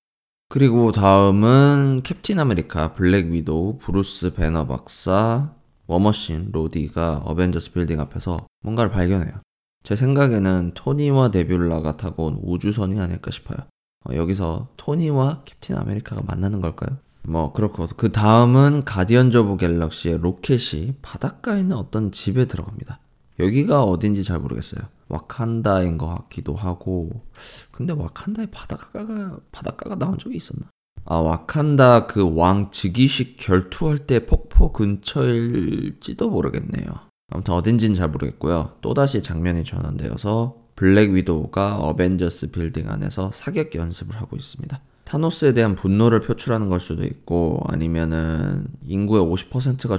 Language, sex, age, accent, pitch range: Korean, male, 20-39, native, 85-125 Hz